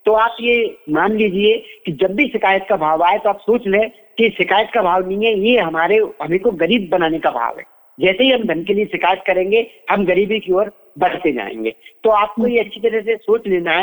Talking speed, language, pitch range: 225 wpm, Hindi, 180-220 Hz